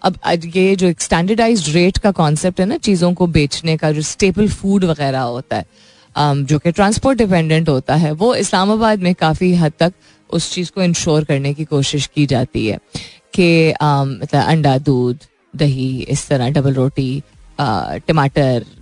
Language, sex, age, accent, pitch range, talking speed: Hindi, female, 30-49, native, 140-180 Hz, 165 wpm